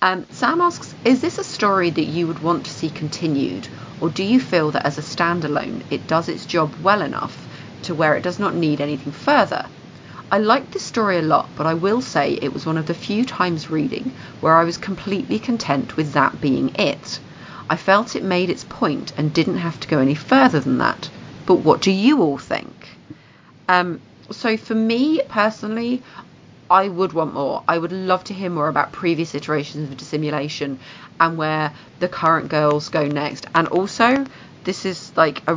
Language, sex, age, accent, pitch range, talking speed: English, female, 40-59, British, 145-185 Hz, 195 wpm